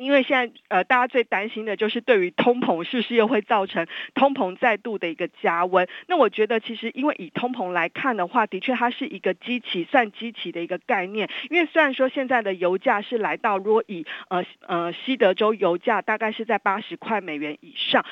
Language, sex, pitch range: Chinese, female, 185-245 Hz